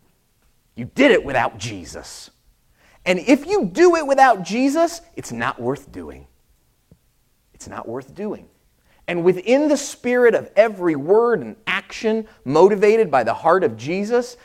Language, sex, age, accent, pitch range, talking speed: English, male, 30-49, American, 180-255 Hz, 145 wpm